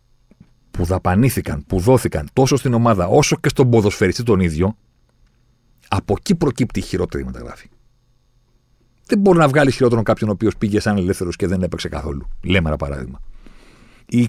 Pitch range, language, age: 90-125 Hz, Greek, 40-59